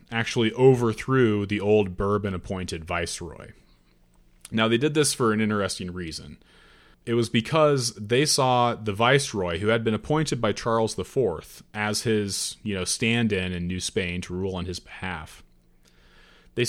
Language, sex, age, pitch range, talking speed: English, male, 30-49, 90-115 Hz, 150 wpm